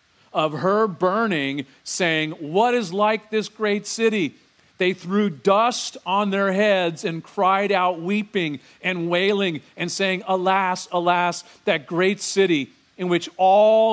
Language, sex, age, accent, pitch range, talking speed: English, male, 40-59, American, 155-200 Hz, 140 wpm